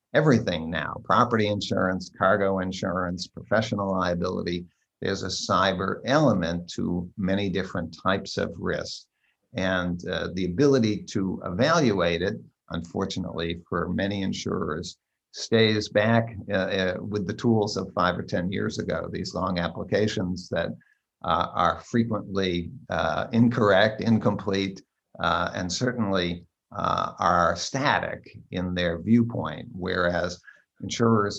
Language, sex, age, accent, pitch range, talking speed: English, male, 50-69, American, 90-105 Hz, 120 wpm